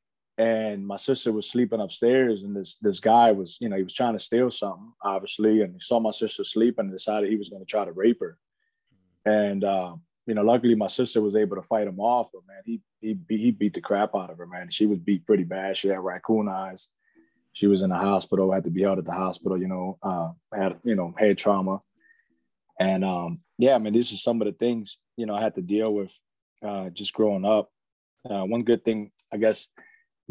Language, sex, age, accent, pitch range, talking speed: English, male, 20-39, American, 95-115 Hz, 235 wpm